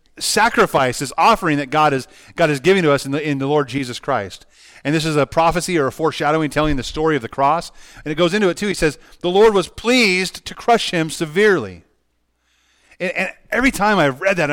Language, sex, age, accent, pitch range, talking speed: English, male, 30-49, American, 135-195 Hz, 225 wpm